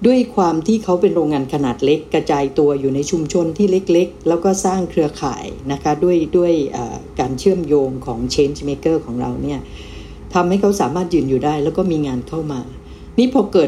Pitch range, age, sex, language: 135-180 Hz, 60-79, female, Thai